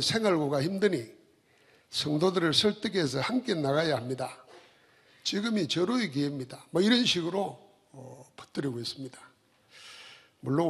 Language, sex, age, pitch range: Korean, male, 60-79, 130-175 Hz